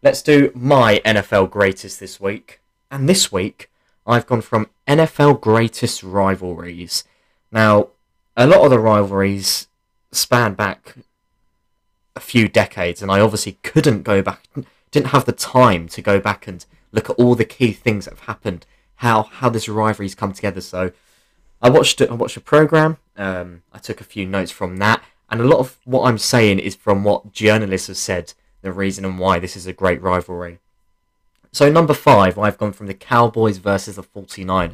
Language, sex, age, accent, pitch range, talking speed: English, male, 20-39, British, 95-125 Hz, 180 wpm